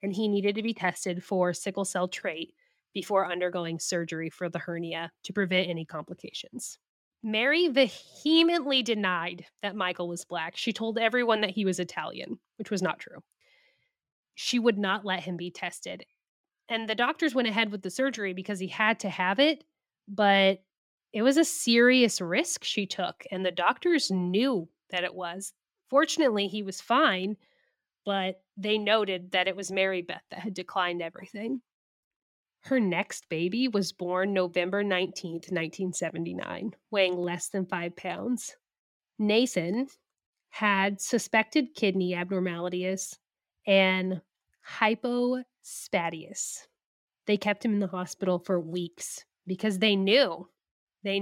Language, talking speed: English, 145 wpm